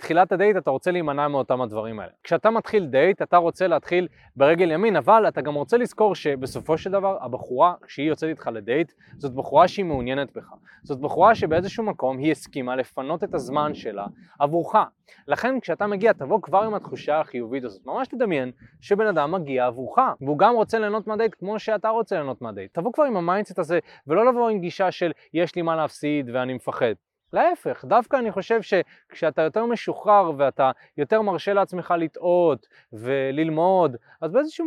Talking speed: 155 wpm